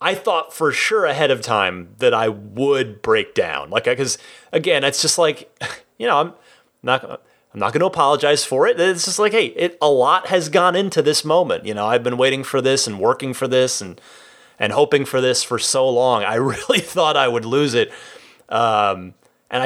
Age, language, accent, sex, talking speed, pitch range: 30-49, English, American, male, 210 wpm, 125-185 Hz